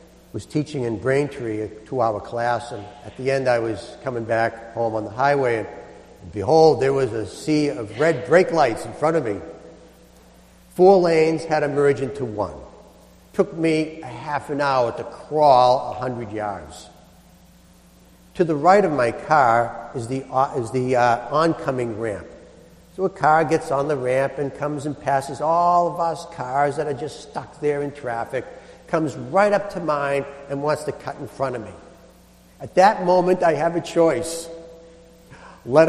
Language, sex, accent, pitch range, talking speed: English, male, American, 115-160 Hz, 175 wpm